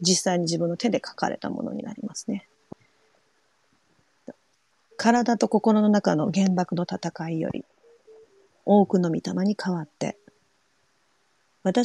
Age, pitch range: 40-59, 185-230 Hz